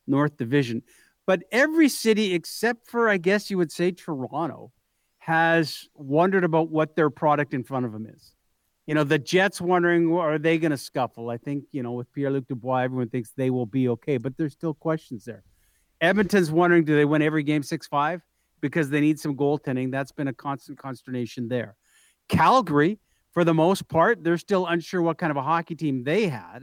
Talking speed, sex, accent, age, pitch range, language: 200 wpm, male, American, 50-69, 135-170 Hz, English